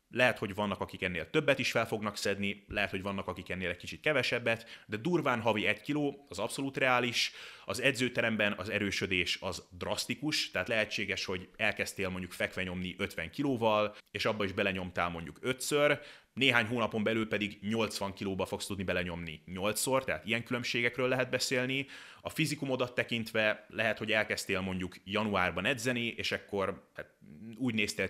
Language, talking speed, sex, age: Hungarian, 160 wpm, male, 30-49